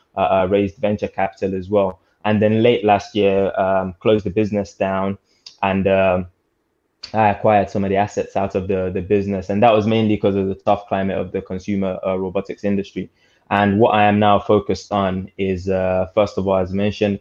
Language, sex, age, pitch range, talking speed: English, male, 20-39, 95-105 Hz, 205 wpm